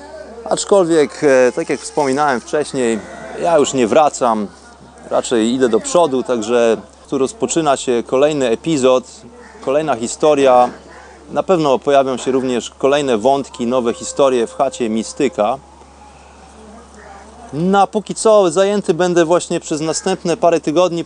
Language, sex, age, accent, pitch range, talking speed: Polish, male, 30-49, native, 120-165 Hz, 125 wpm